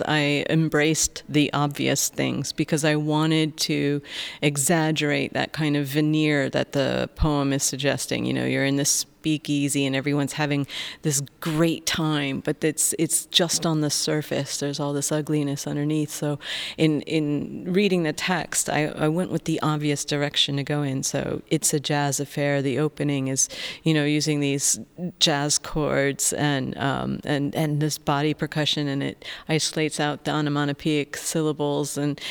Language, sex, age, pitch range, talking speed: English, female, 40-59, 145-155 Hz, 165 wpm